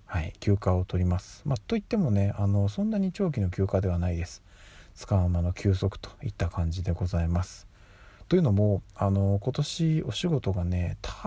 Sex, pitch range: male, 95-115 Hz